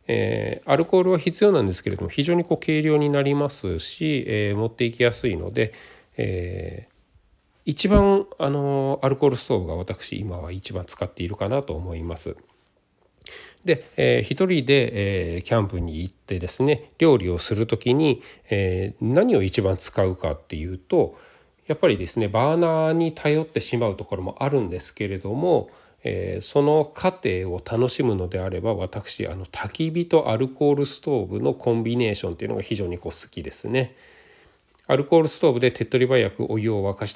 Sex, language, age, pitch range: male, Japanese, 40-59, 95-140 Hz